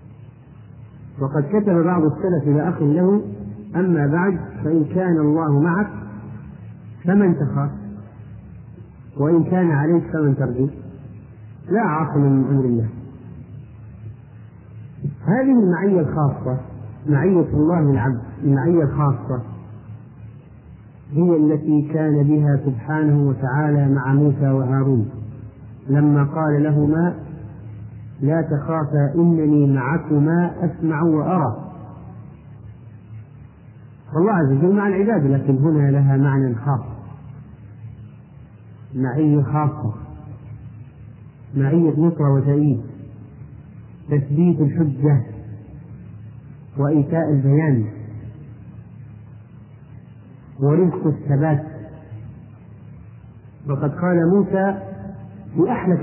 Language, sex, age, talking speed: Arabic, male, 50-69, 80 wpm